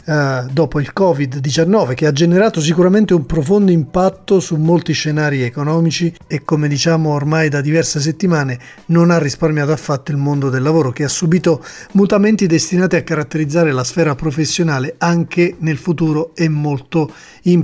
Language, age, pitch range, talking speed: Italian, 40-59, 150-180 Hz, 155 wpm